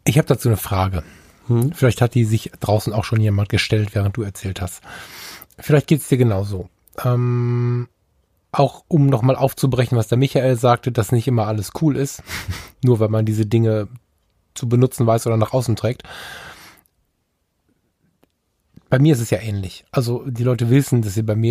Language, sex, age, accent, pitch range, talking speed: German, male, 10-29, German, 110-125 Hz, 180 wpm